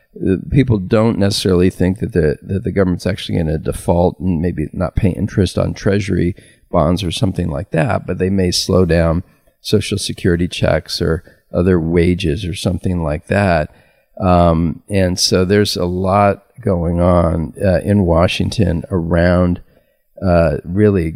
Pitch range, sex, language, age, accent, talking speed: 85-100 Hz, male, English, 40-59, American, 155 wpm